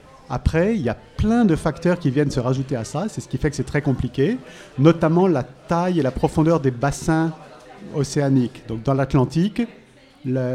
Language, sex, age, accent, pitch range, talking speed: French, male, 40-59, French, 130-160 Hz, 195 wpm